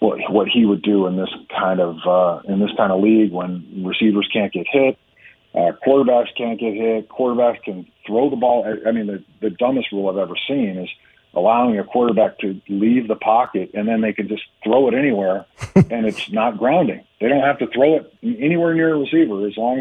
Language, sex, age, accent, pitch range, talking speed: English, male, 40-59, American, 100-120 Hz, 220 wpm